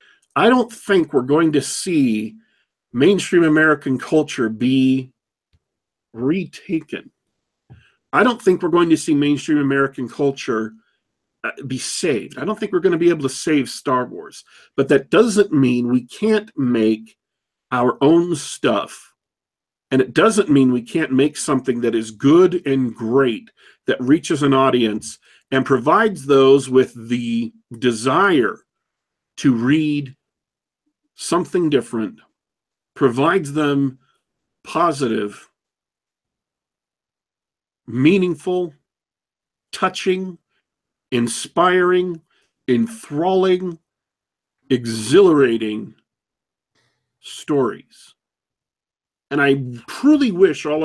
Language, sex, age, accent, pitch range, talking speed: English, male, 50-69, American, 125-175 Hz, 105 wpm